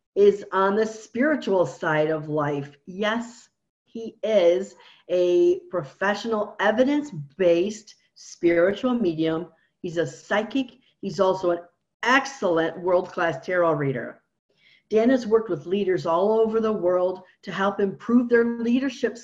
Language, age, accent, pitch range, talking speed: English, 50-69, American, 165-220 Hz, 120 wpm